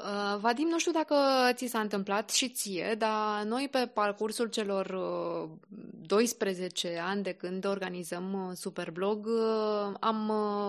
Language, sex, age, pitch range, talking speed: Romanian, female, 20-39, 185-240 Hz, 120 wpm